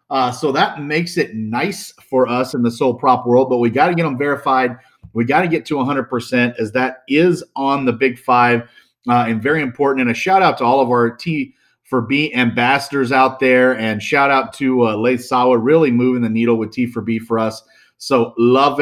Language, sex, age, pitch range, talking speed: English, male, 40-59, 120-150 Hz, 225 wpm